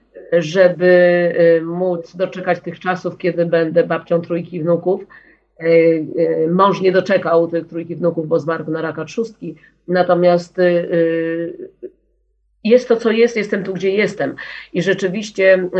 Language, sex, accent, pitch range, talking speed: Polish, female, native, 170-185 Hz, 120 wpm